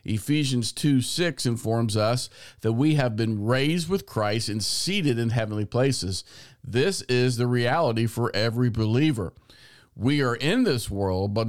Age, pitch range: 50-69, 110-130 Hz